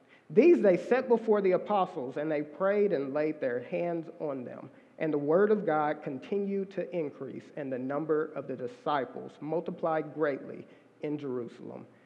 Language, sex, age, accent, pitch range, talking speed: English, male, 40-59, American, 160-245 Hz, 165 wpm